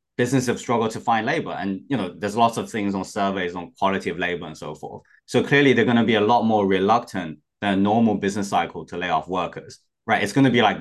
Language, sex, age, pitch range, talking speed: English, male, 20-39, 95-120 Hz, 260 wpm